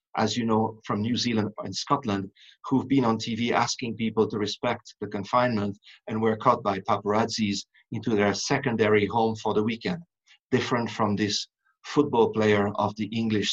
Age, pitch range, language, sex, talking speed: 50-69, 105-135 Hz, English, male, 170 wpm